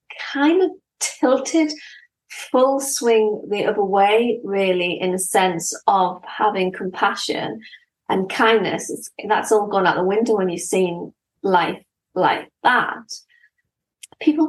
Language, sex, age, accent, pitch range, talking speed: English, female, 30-49, British, 195-270 Hz, 125 wpm